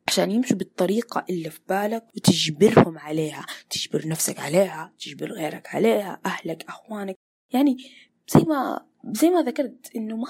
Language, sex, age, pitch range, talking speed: Arabic, female, 20-39, 190-245 Hz, 140 wpm